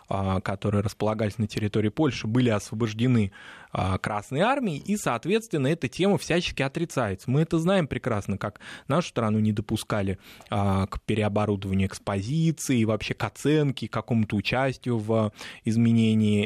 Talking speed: 130 wpm